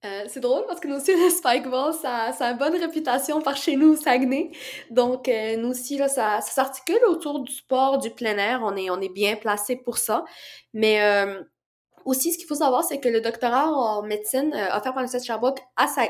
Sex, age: female, 20-39